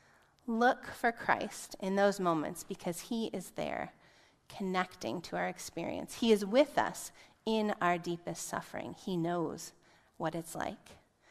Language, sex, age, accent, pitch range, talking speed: English, female, 30-49, American, 165-215 Hz, 145 wpm